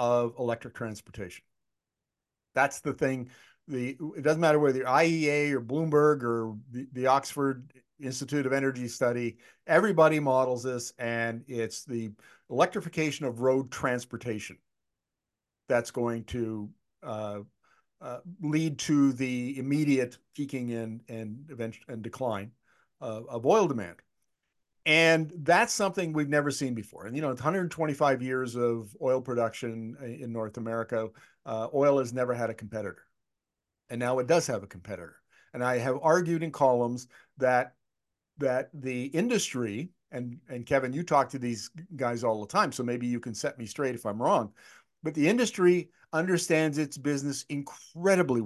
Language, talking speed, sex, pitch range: English, 150 wpm, male, 120-150 Hz